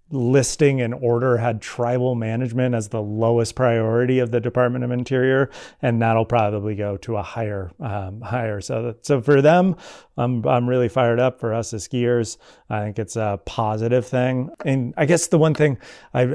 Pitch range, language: 110-130 Hz, English